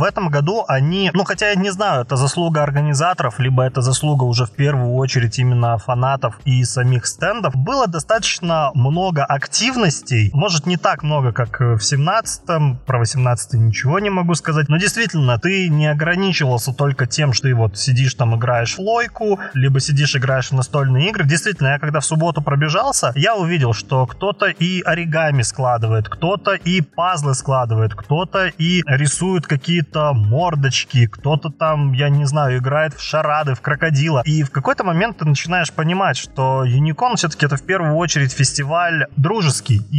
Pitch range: 130-165 Hz